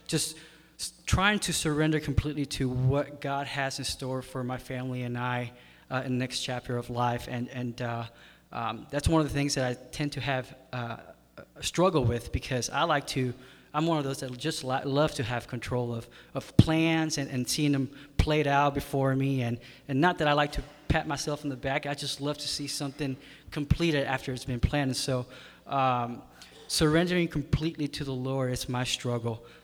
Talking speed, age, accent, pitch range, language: 200 wpm, 20-39, American, 125-145 Hz, English